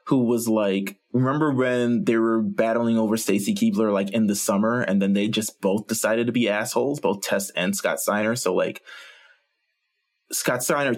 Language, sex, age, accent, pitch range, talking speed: English, male, 20-39, American, 100-125 Hz, 180 wpm